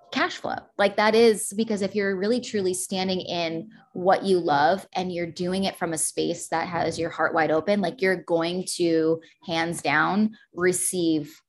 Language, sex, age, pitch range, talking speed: English, female, 20-39, 165-200 Hz, 185 wpm